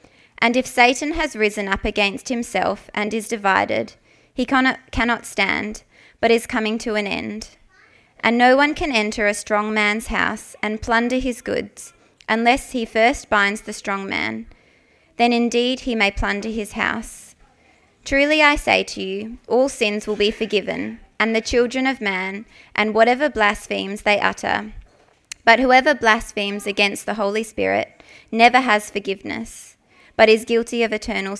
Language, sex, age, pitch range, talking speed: English, female, 20-39, 205-240 Hz, 155 wpm